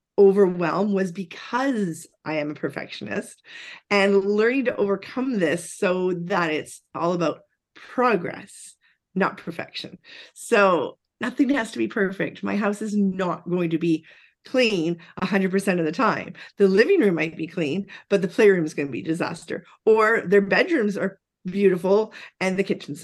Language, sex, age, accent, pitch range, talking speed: English, female, 40-59, American, 170-220 Hz, 160 wpm